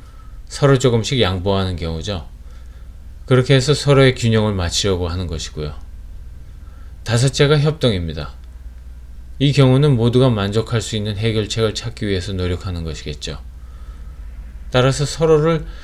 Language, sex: Korean, male